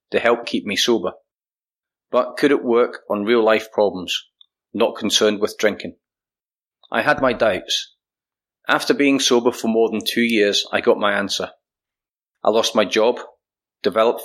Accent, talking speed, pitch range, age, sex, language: British, 155 wpm, 105-130 Hz, 30-49, male, English